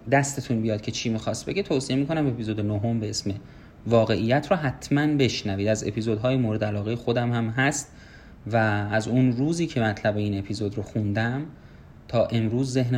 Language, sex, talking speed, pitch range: Persian, male, 165 wpm, 110-145 Hz